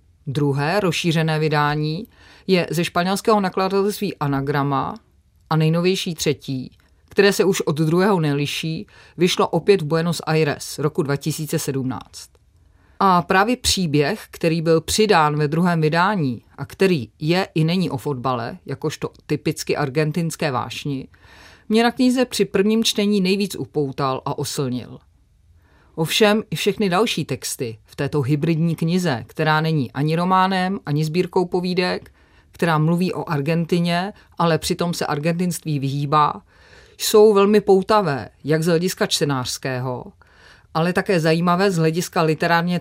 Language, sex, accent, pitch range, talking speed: Czech, female, native, 145-185 Hz, 130 wpm